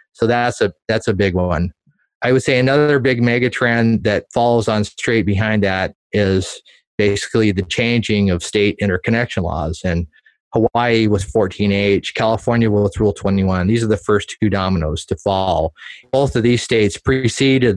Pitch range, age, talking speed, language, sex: 100-120 Hz, 30-49, 160 wpm, English, male